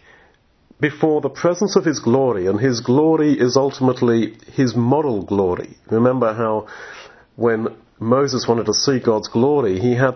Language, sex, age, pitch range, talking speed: English, male, 50-69, 115-145 Hz, 150 wpm